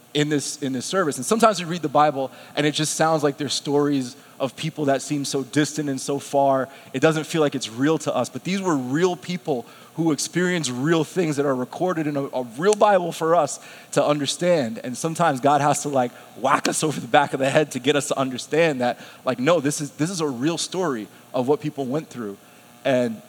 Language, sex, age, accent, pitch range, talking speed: English, male, 30-49, American, 130-165 Hz, 240 wpm